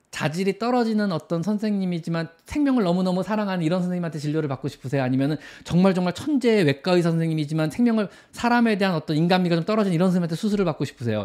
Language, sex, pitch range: Korean, male, 130-205 Hz